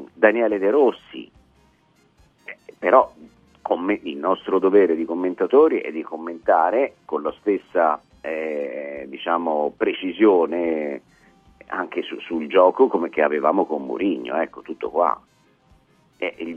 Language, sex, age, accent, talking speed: Italian, male, 50-69, native, 125 wpm